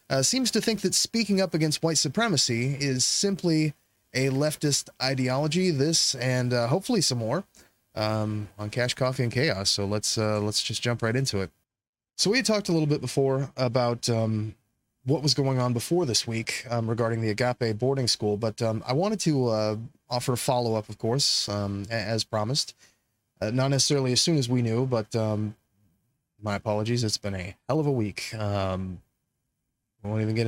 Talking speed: 190 wpm